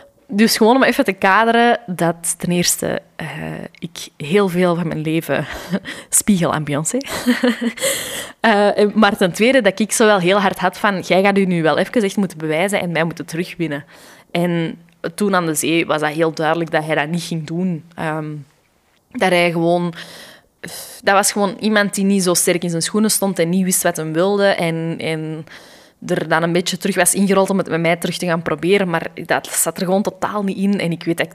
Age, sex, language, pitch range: 20-39, female, Dutch, 165-195 Hz